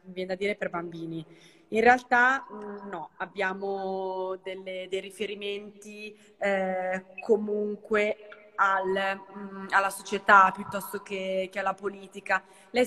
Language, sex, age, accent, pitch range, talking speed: Italian, female, 20-39, native, 185-210 Hz, 100 wpm